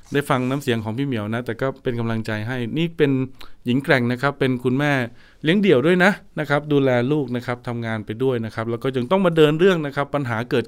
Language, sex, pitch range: Thai, male, 125-175 Hz